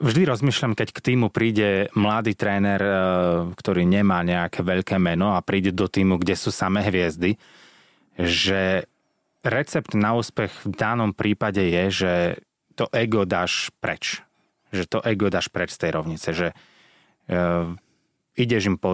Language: Slovak